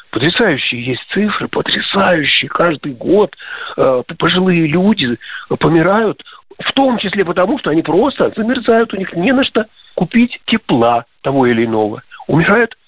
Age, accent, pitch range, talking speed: 50-69, native, 145-225 Hz, 135 wpm